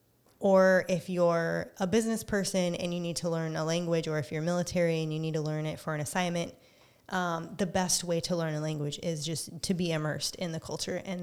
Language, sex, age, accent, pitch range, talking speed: English, female, 20-39, American, 165-195 Hz, 230 wpm